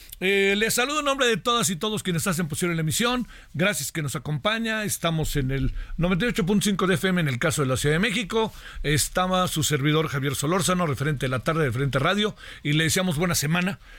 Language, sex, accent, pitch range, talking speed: Spanish, male, Mexican, 140-195 Hz, 210 wpm